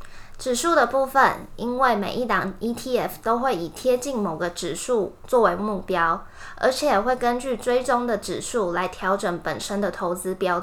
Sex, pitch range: female, 185-240 Hz